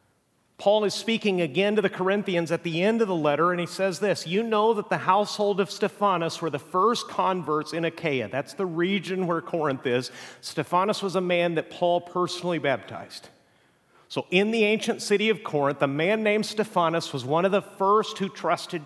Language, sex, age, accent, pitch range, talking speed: English, male, 40-59, American, 165-205 Hz, 195 wpm